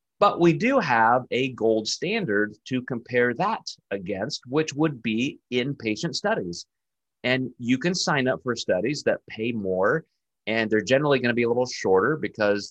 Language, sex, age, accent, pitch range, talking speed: English, male, 30-49, American, 100-130 Hz, 170 wpm